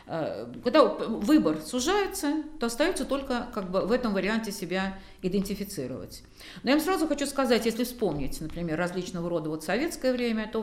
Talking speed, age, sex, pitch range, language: 160 wpm, 50-69, female, 170-240 Hz, Russian